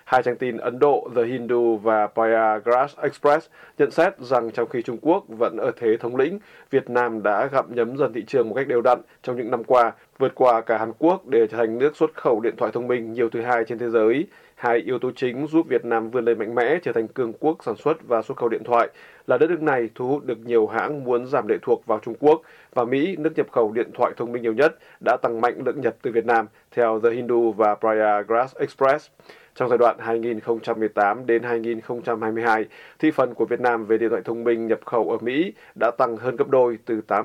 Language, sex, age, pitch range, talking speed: Vietnamese, male, 20-39, 115-130 Hz, 240 wpm